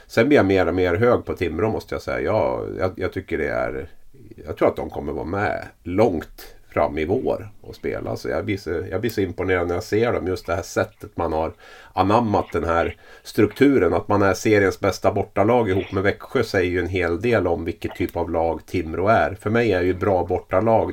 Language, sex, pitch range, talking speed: English, male, 85-115 Hz, 225 wpm